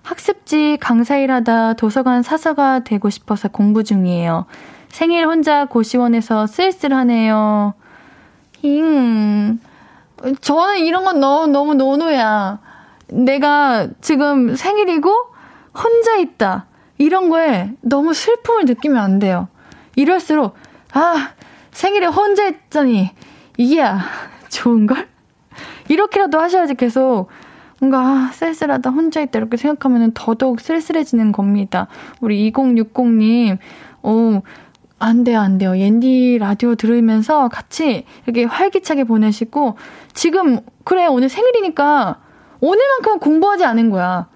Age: 20-39